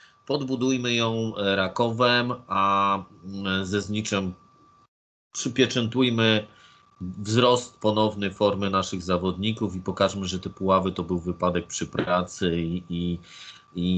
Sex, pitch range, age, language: male, 95-105 Hz, 30-49, Polish